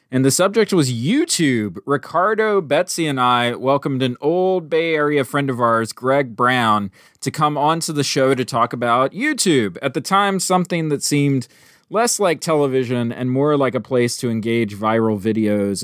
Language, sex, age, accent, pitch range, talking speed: English, male, 20-39, American, 115-155 Hz, 175 wpm